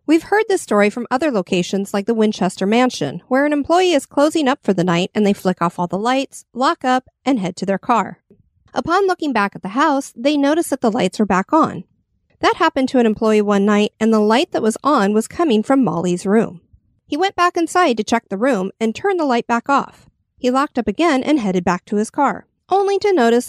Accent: American